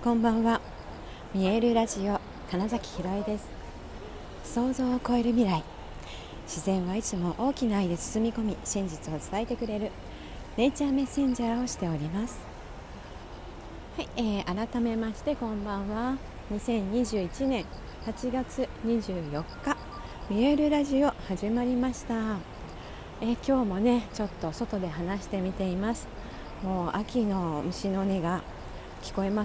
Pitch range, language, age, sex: 165-230 Hz, Japanese, 40-59, female